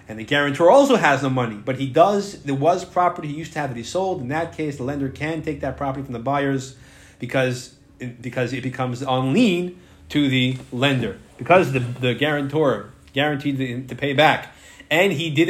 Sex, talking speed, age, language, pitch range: male, 210 wpm, 30-49, English, 130-160 Hz